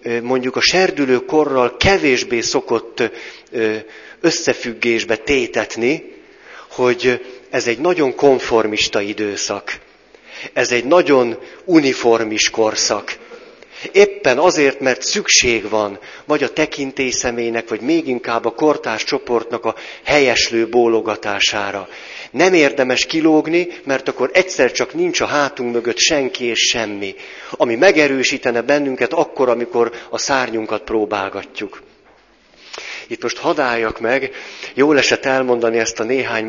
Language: Hungarian